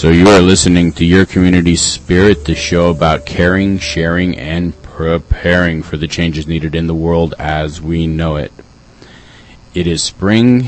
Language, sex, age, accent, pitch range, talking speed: English, male, 30-49, American, 80-110 Hz, 165 wpm